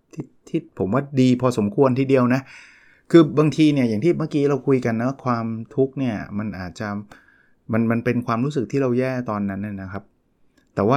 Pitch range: 105-135 Hz